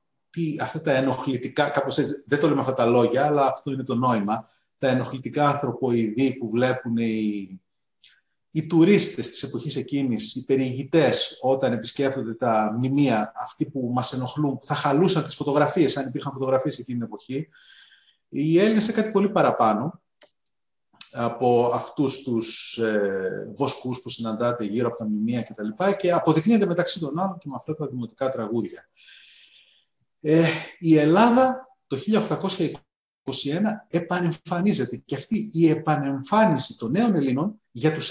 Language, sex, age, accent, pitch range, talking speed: Greek, male, 30-49, native, 125-180 Hz, 145 wpm